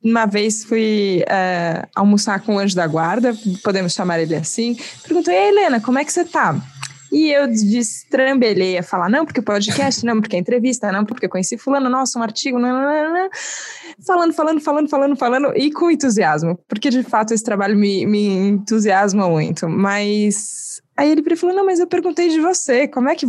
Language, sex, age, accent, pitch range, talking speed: Portuguese, female, 20-39, Brazilian, 195-275 Hz, 190 wpm